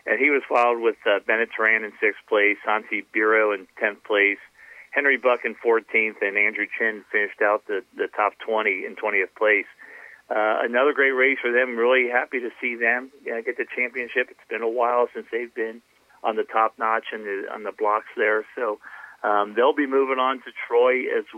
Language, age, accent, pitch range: English, 50-69, American, 110-140 Hz